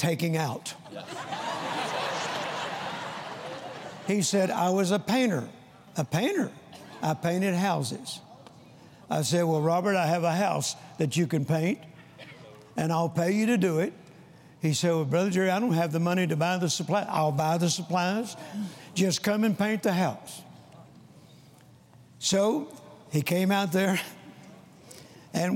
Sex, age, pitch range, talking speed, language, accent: male, 60-79, 160-205 Hz, 145 wpm, English, American